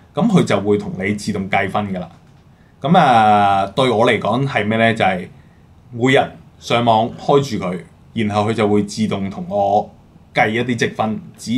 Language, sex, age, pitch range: Chinese, male, 20-39, 100-125 Hz